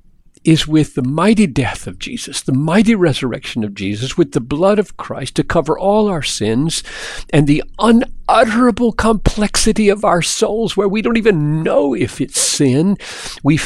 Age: 50-69